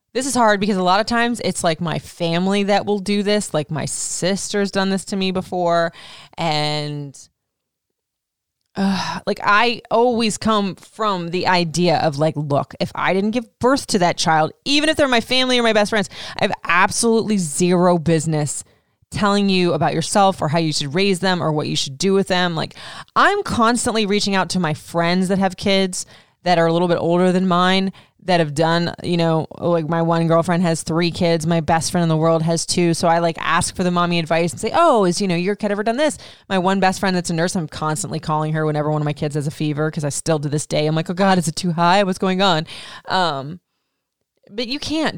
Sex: female